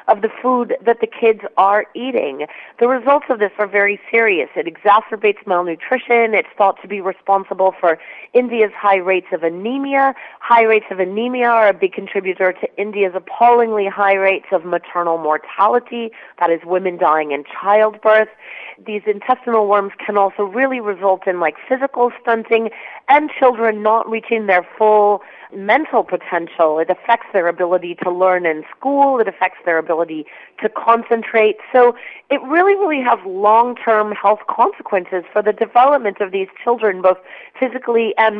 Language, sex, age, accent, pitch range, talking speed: English, female, 40-59, American, 190-240 Hz, 160 wpm